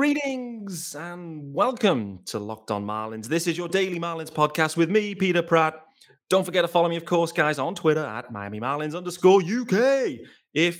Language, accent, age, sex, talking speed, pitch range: English, British, 30-49, male, 185 wpm, 125-185 Hz